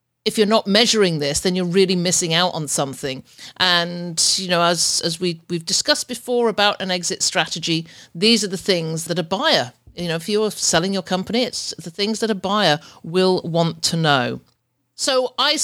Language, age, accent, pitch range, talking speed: English, 50-69, British, 165-210 Hz, 195 wpm